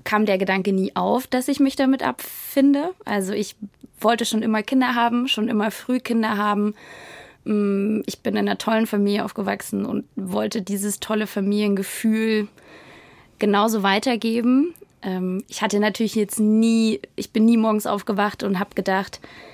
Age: 20-39